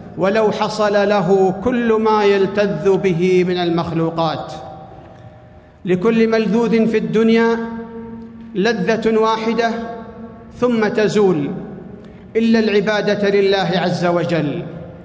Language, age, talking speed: Arabic, 50-69, 90 wpm